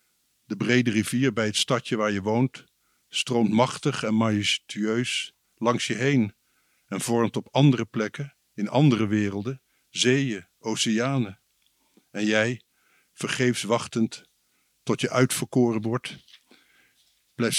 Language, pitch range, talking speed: Dutch, 110-125 Hz, 120 wpm